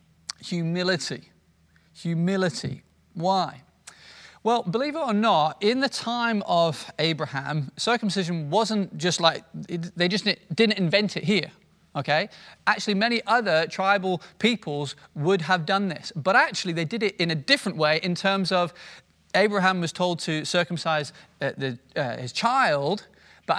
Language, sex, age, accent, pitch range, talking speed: English, male, 30-49, British, 165-200 Hz, 135 wpm